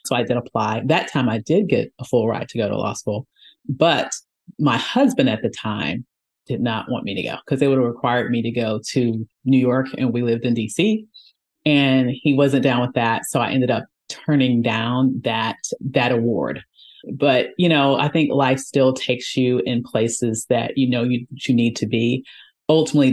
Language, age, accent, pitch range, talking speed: English, 30-49, American, 120-145 Hz, 210 wpm